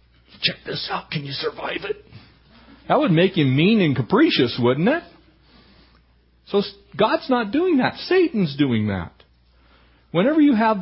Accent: American